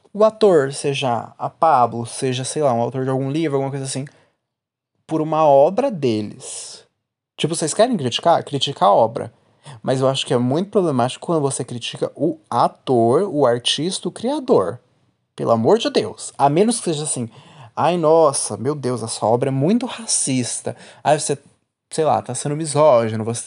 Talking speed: 175 wpm